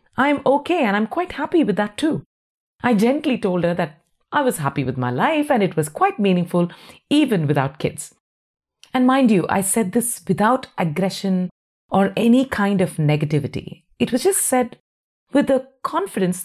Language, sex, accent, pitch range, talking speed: English, female, Indian, 160-250 Hz, 175 wpm